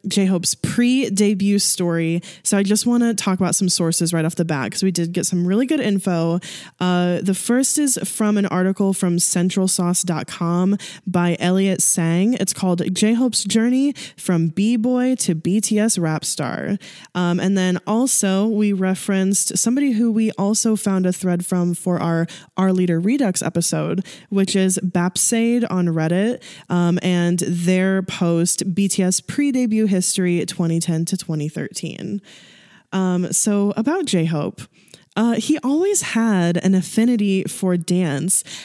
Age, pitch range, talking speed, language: 10-29, 175-210 Hz, 145 wpm, English